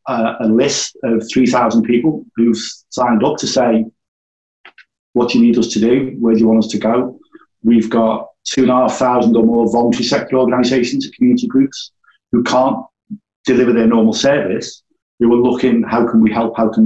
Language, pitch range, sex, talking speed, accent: English, 115-130 Hz, male, 180 wpm, British